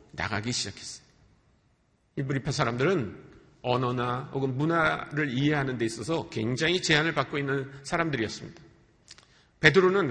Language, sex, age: Korean, male, 50-69